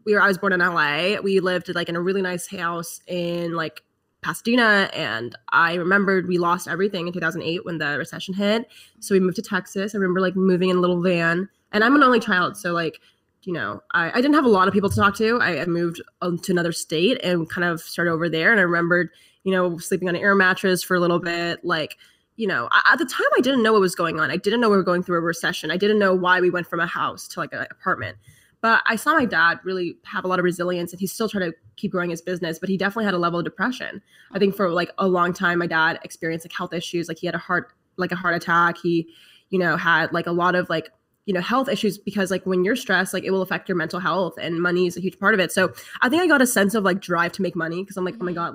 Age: 20-39